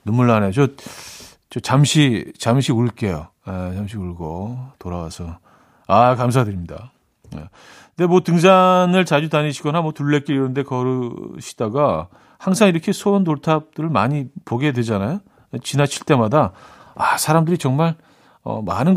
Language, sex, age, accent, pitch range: Korean, male, 40-59, native, 110-150 Hz